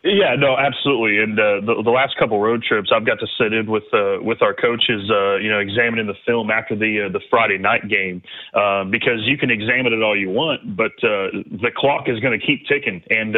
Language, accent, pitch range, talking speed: English, American, 115-140 Hz, 240 wpm